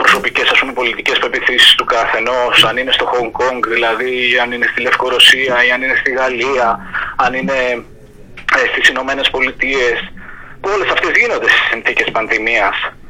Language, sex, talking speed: Greek, male, 160 wpm